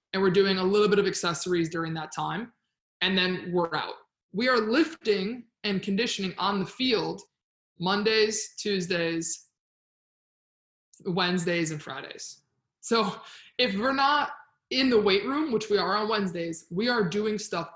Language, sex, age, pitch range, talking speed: English, male, 20-39, 170-205 Hz, 150 wpm